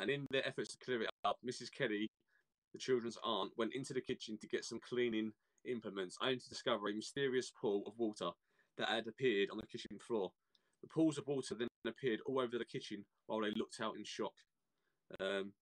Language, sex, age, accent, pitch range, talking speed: English, male, 20-39, British, 110-130 Hz, 210 wpm